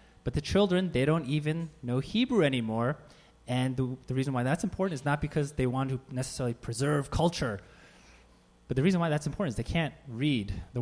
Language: English